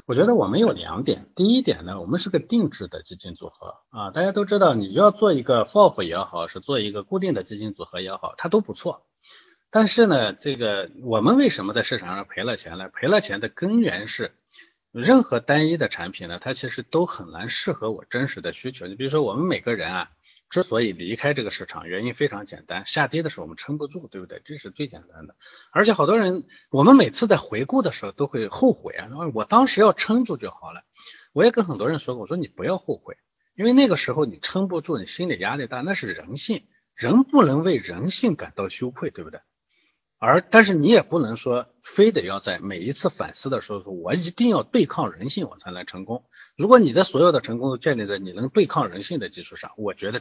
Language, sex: Chinese, male